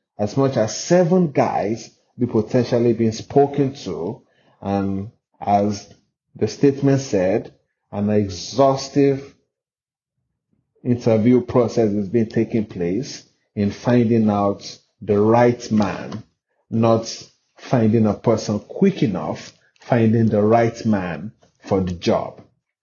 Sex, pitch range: male, 105-125 Hz